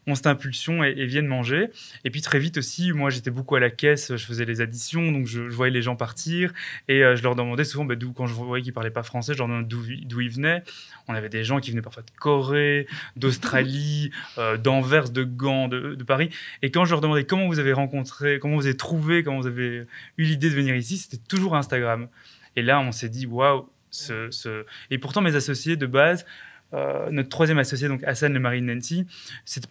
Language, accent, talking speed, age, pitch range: French, French, 235 wpm, 20-39, 125-150 Hz